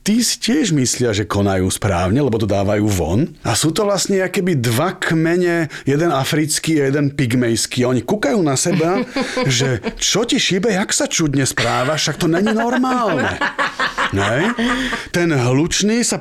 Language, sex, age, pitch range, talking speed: Slovak, male, 30-49, 125-180 Hz, 155 wpm